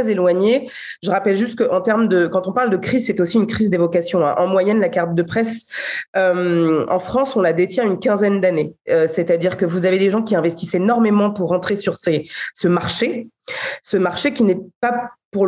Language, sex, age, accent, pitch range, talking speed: French, female, 30-49, French, 175-225 Hz, 195 wpm